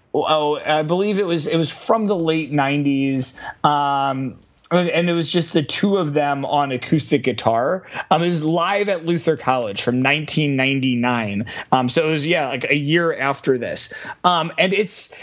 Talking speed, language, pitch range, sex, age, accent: 180 wpm, English, 145-185 Hz, male, 30-49, American